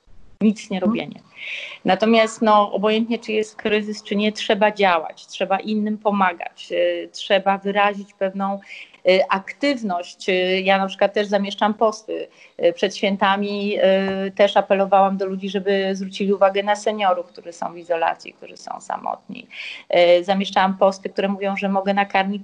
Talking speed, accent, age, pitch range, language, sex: 135 wpm, native, 40-59, 190-215 Hz, Polish, female